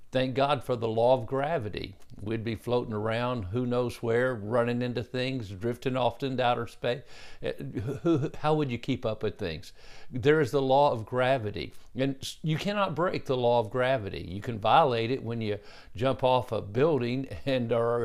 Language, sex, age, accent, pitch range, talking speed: English, male, 50-69, American, 120-155 Hz, 185 wpm